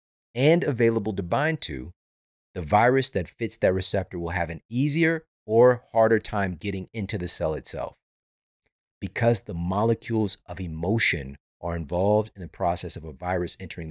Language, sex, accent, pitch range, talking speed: English, male, American, 80-105 Hz, 160 wpm